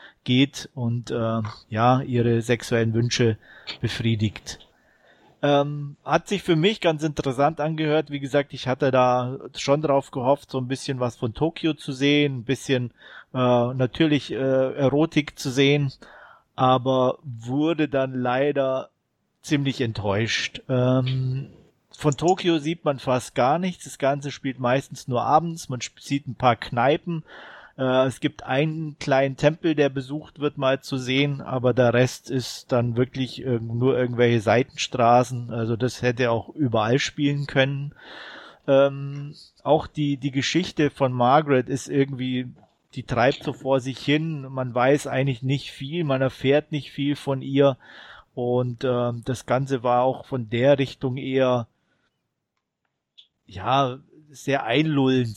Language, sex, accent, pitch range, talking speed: German, male, German, 125-145 Hz, 140 wpm